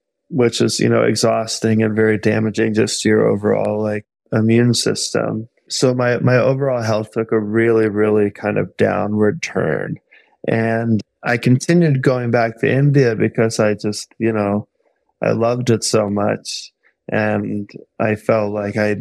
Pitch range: 105-115 Hz